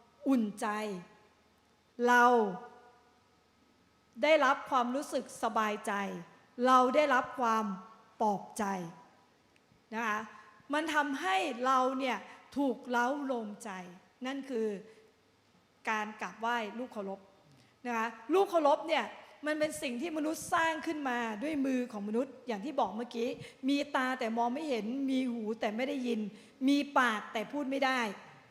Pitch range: 225-275 Hz